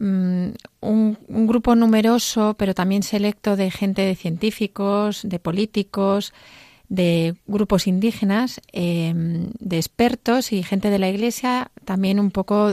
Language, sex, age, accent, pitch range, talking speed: Spanish, female, 30-49, Spanish, 185-210 Hz, 125 wpm